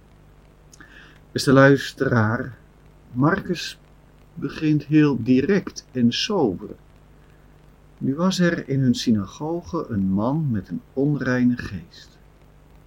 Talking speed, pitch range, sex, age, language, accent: 100 wpm, 110-150 Hz, male, 50-69, Dutch, Dutch